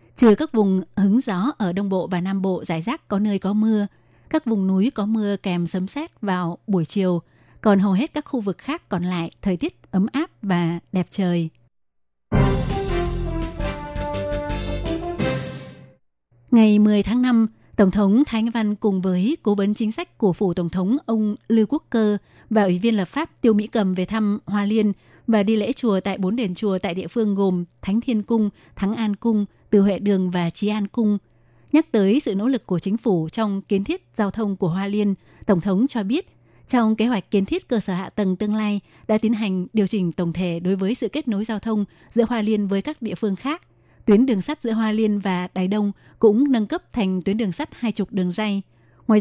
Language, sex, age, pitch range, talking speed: Vietnamese, female, 20-39, 190-225 Hz, 215 wpm